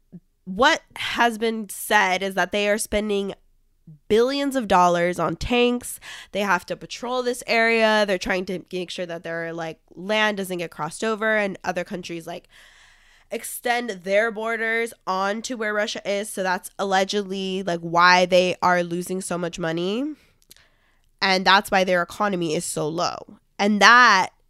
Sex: female